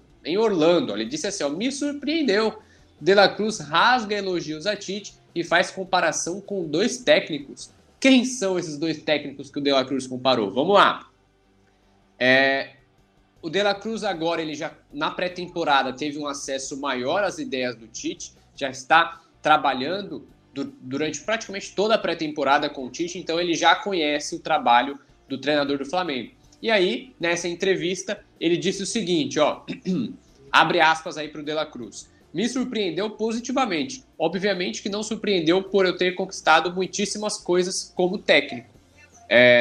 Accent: Brazilian